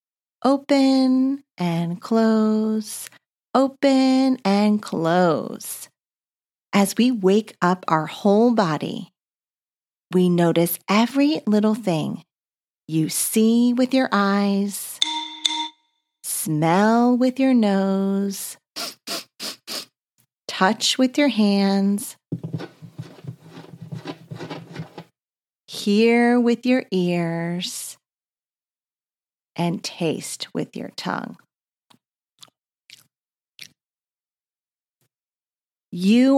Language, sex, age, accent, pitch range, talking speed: English, female, 40-59, American, 170-240 Hz, 70 wpm